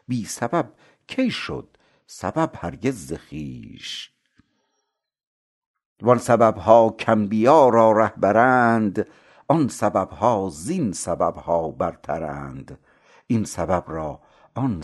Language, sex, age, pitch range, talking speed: Persian, male, 60-79, 80-115 Hz, 95 wpm